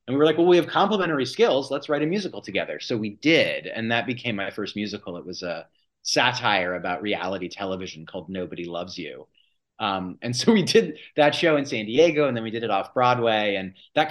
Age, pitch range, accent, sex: 30-49, 100-135 Hz, American, male